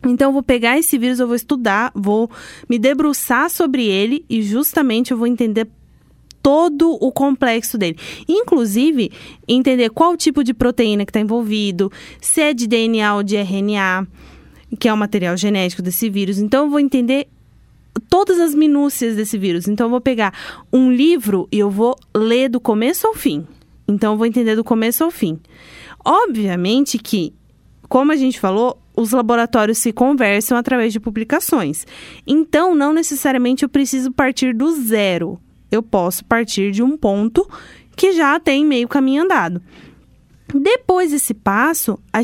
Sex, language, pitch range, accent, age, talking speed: female, Portuguese, 210-285 Hz, Brazilian, 20-39, 160 wpm